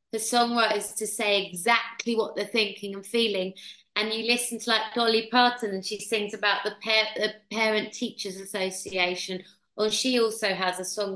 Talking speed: 185 wpm